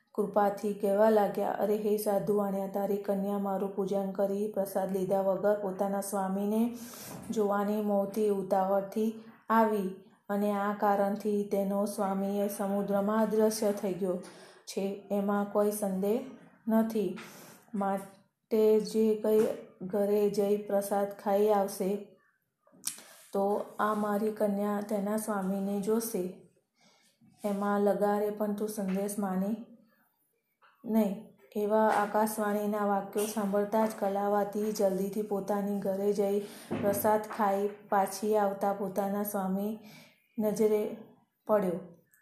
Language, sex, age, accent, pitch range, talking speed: Gujarati, female, 30-49, native, 200-215 Hz, 105 wpm